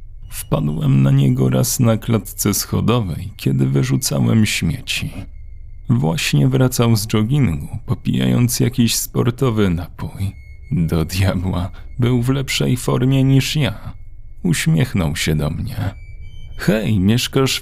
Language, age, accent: Polish, 40-59, native